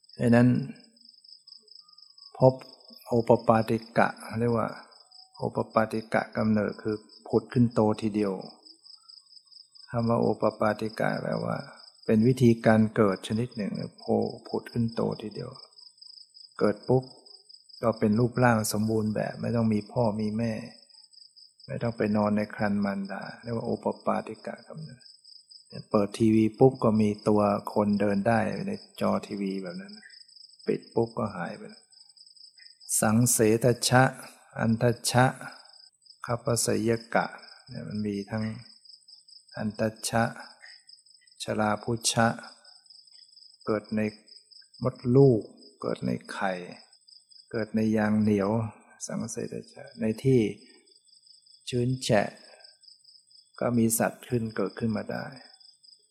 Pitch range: 110-125 Hz